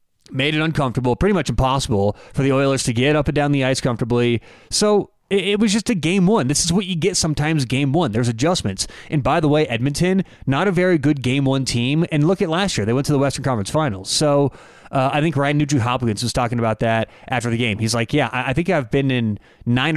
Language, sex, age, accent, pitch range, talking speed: English, male, 30-49, American, 125-170 Hz, 245 wpm